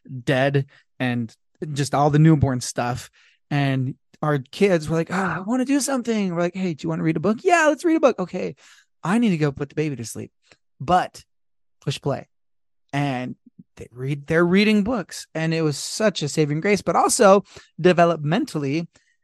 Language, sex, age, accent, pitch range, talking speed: English, male, 20-39, American, 140-190 Hz, 195 wpm